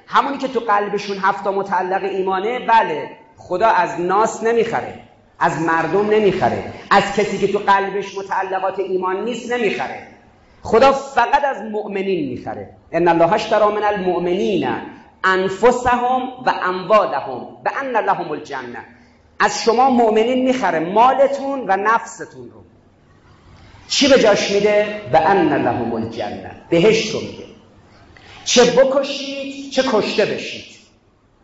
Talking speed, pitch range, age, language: 120 wpm, 160-240 Hz, 40-59, Persian